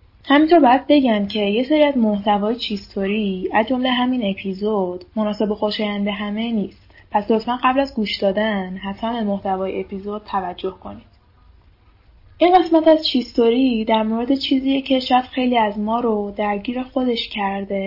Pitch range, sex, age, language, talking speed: 195-225 Hz, female, 10-29, Persian, 150 wpm